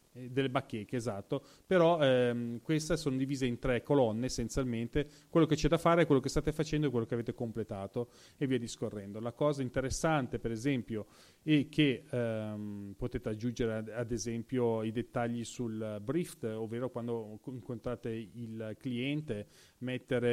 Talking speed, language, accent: 155 wpm, Italian, native